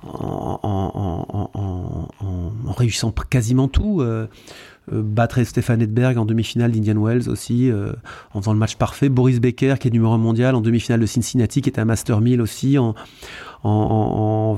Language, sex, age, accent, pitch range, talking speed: French, male, 40-59, French, 110-135 Hz, 190 wpm